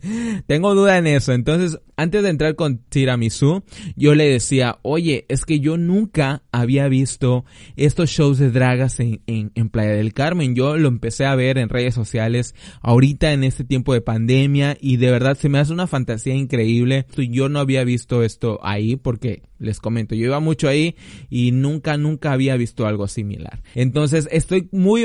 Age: 20-39